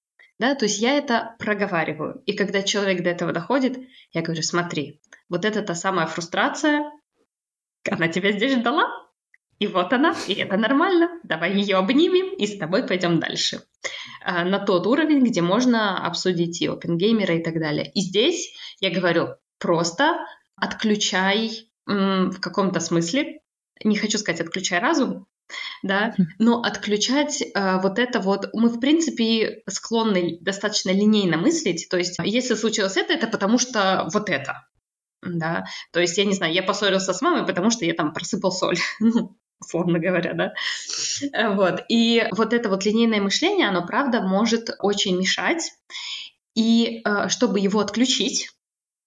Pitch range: 180-230 Hz